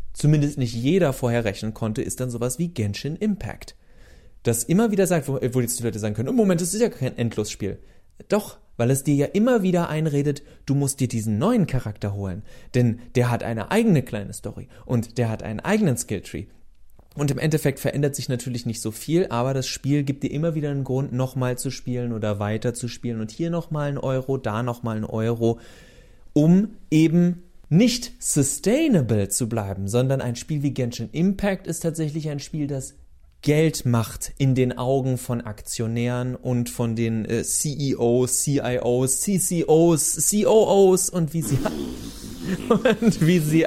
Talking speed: 180 wpm